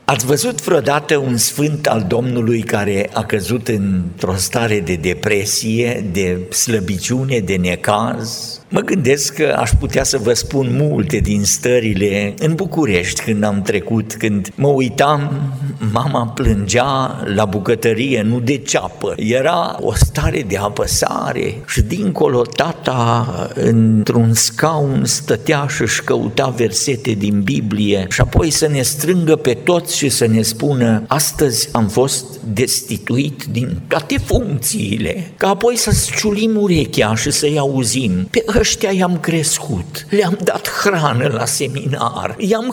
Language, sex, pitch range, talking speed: Romanian, male, 120-200 Hz, 135 wpm